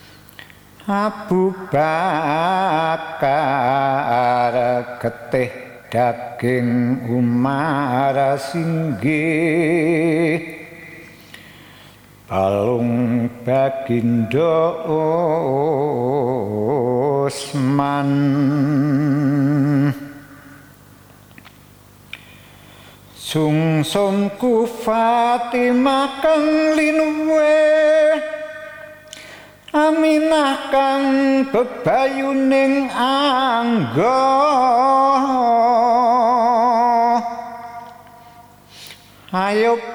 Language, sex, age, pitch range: English, male, 60-79, 150-245 Hz